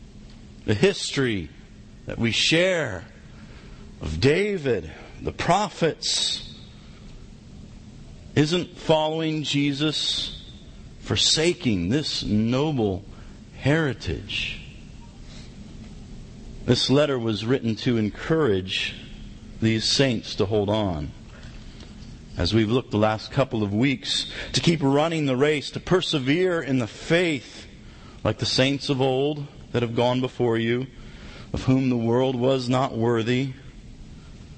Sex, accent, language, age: male, American, English, 50-69